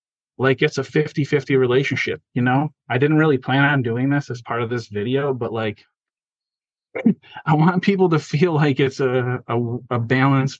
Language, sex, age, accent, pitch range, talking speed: English, male, 30-49, American, 110-135 Hz, 180 wpm